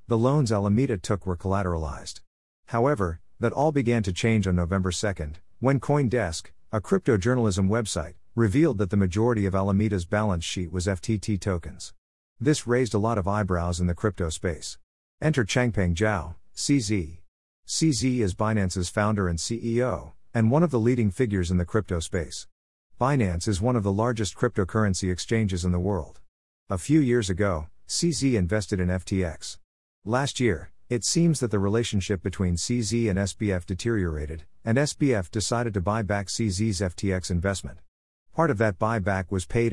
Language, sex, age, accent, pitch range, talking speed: English, male, 50-69, American, 90-115 Hz, 165 wpm